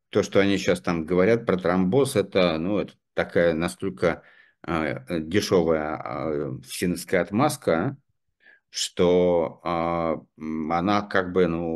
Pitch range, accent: 85-100 Hz, native